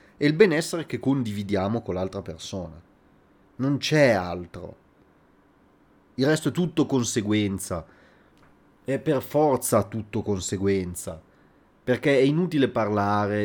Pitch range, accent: 95-120 Hz, native